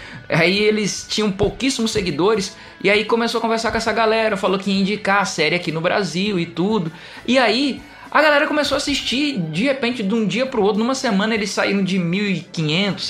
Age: 20-39